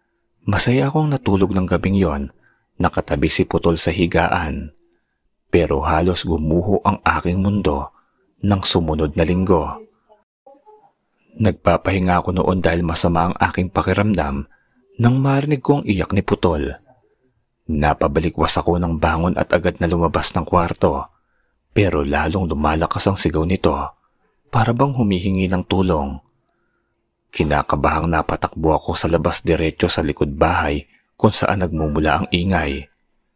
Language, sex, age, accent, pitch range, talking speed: Filipino, male, 30-49, native, 80-100 Hz, 125 wpm